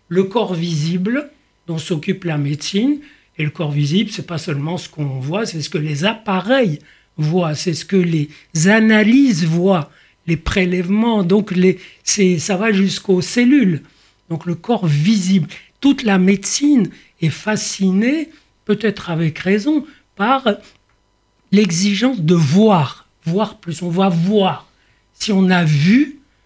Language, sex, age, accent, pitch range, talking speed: French, male, 60-79, French, 165-220 Hz, 145 wpm